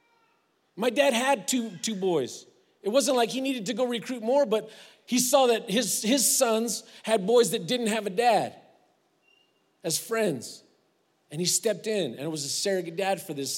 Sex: male